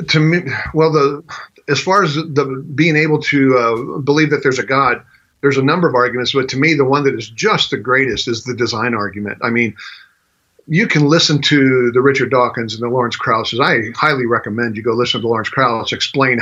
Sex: male